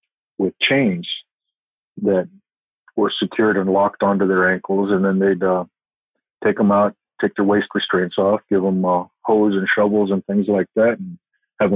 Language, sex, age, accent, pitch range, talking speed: English, male, 40-59, American, 95-110 Hz, 180 wpm